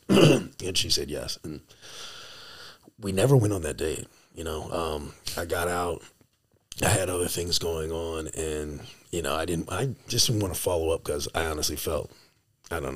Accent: American